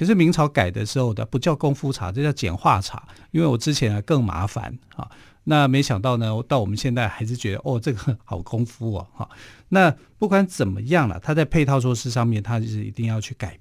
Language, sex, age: Chinese, male, 50-69